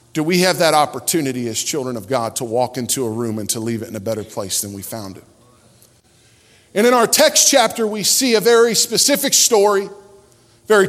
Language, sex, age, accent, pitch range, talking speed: English, male, 40-59, American, 130-210 Hz, 210 wpm